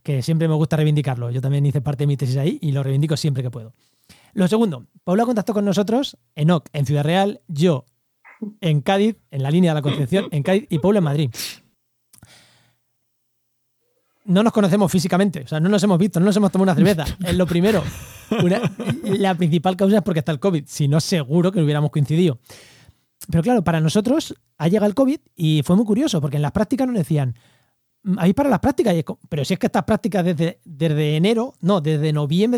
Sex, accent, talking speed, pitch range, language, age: male, Spanish, 210 wpm, 150-200 Hz, Spanish, 20-39